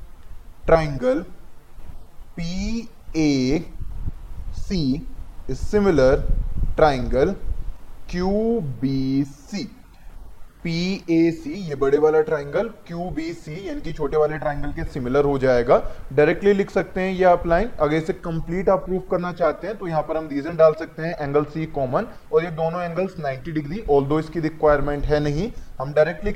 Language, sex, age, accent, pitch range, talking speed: Hindi, male, 20-39, native, 140-185 Hz, 145 wpm